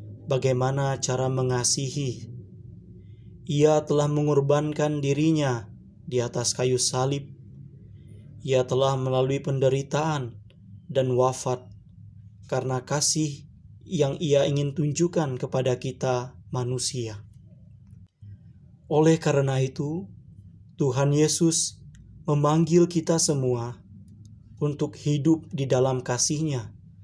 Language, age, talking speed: Indonesian, 20-39, 85 wpm